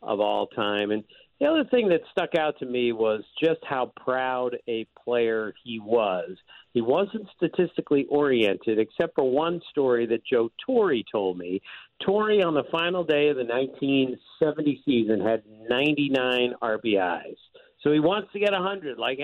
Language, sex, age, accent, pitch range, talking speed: English, male, 50-69, American, 130-195 Hz, 165 wpm